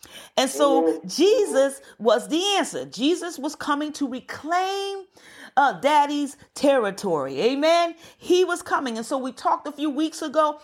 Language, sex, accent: English, female, American